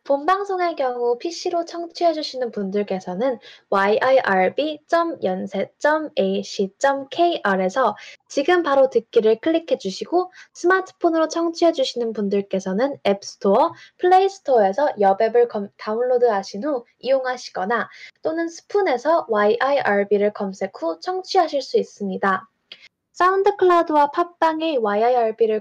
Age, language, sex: 10-29, Korean, female